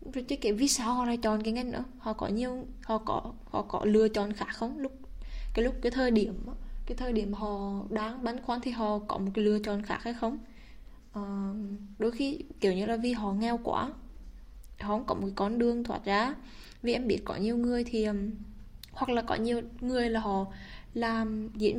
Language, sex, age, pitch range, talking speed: Vietnamese, female, 10-29, 210-245 Hz, 215 wpm